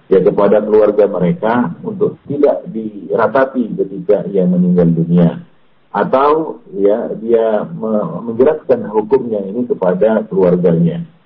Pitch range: 85-130 Hz